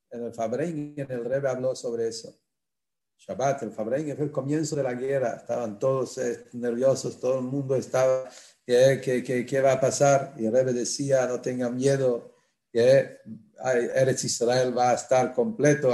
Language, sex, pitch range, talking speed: English, male, 110-130 Hz, 175 wpm